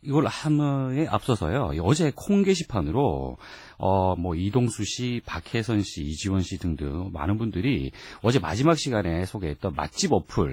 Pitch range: 85-135 Hz